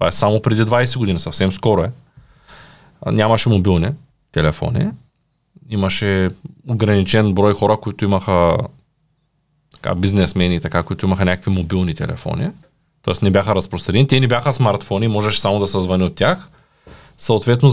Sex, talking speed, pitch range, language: male, 140 wpm, 100-145 Hz, Bulgarian